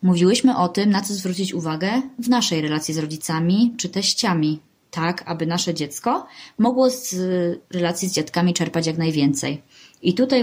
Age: 20-39